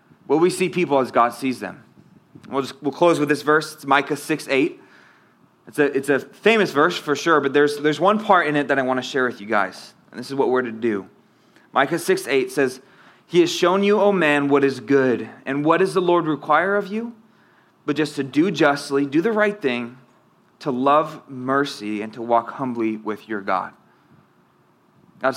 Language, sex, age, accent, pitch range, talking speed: English, male, 20-39, American, 125-150 Hz, 205 wpm